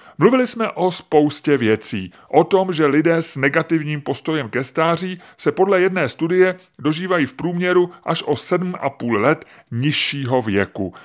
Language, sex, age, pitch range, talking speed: Czech, female, 30-49, 130-175 Hz, 145 wpm